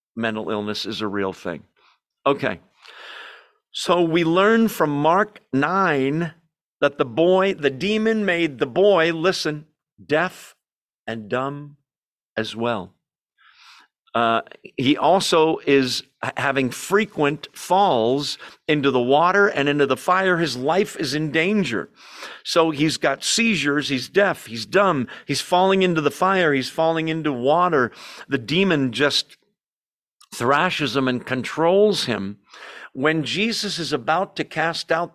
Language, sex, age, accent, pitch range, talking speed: English, male, 50-69, American, 130-175 Hz, 135 wpm